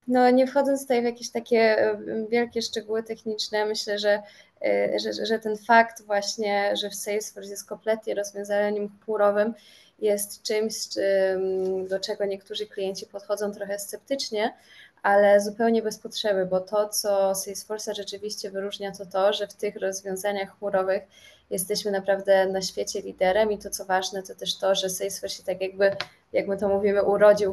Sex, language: female, Polish